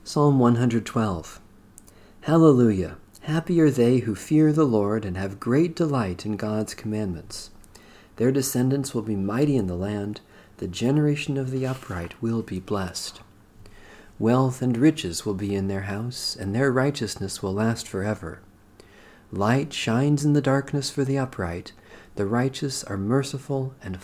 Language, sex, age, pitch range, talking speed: English, male, 40-59, 100-130 Hz, 150 wpm